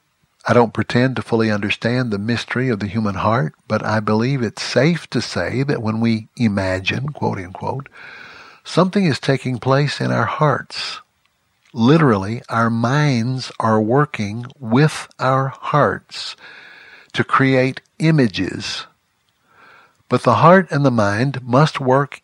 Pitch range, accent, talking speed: 110-135 Hz, American, 135 wpm